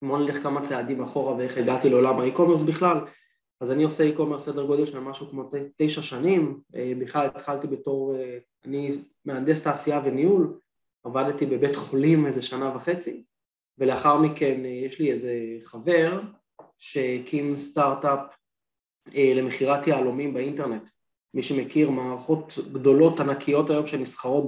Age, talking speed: 20-39, 125 wpm